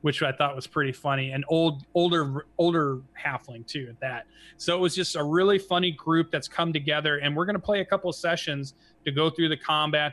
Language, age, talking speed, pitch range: English, 30-49, 225 wpm, 135-170 Hz